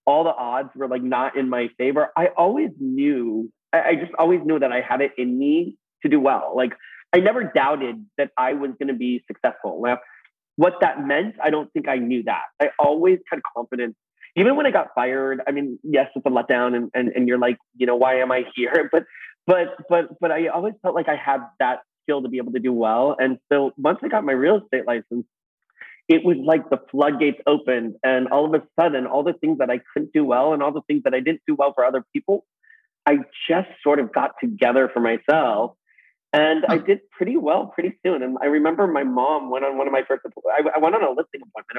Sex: male